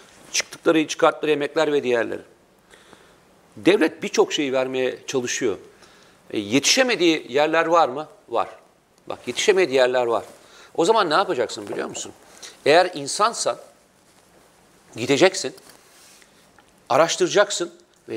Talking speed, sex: 100 wpm, male